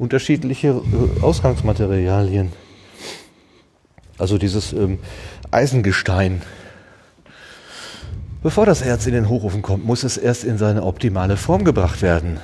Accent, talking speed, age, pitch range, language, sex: German, 105 wpm, 30-49, 100-135 Hz, German, male